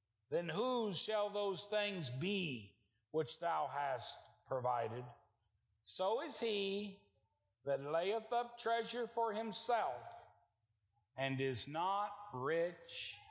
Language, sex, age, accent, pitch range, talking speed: English, male, 60-79, American, 110-175 Hz, 105 wpm